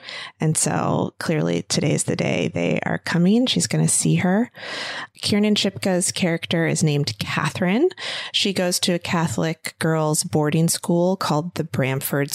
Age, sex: 30-49, female